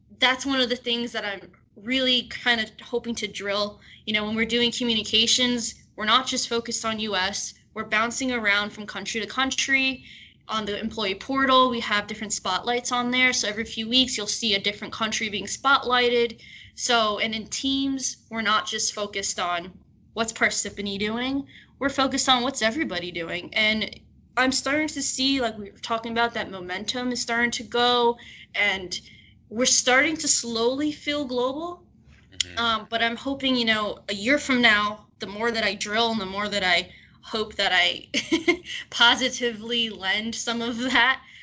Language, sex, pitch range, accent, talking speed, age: English, female, 210-255 Hz, American, 175 wpm, 10-29